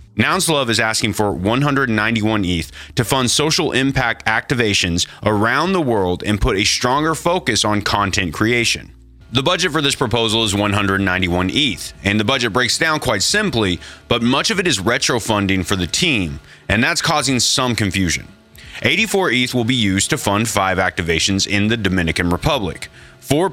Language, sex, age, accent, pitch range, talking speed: English, male, 30-49, American, 95-130 Hz, 165 wpm